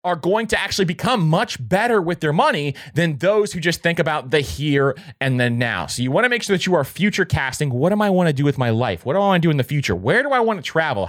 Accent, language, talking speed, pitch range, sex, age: American, English, 305 wpm, 125-180 Hz, male, 30-49